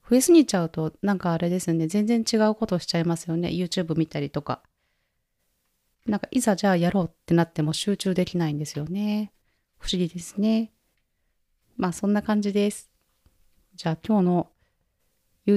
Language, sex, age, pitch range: Japanese, female, 30-49, 160-200 Hz